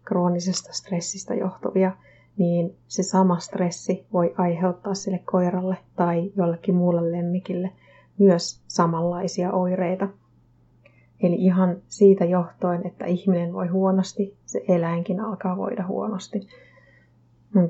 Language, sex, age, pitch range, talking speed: Finnish, female, 30-49, 175-190 Hz, 110 wpm